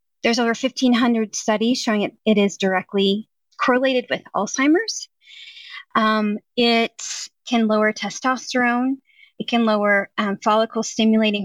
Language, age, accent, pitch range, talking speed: English, 30-49, American, 205-265 Hz, 115 wpm